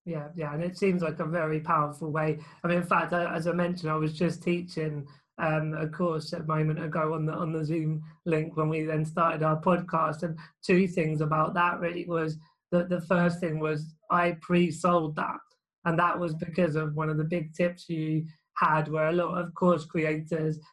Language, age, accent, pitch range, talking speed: English, 20-39, British, 155-175 Hz, 205 wpm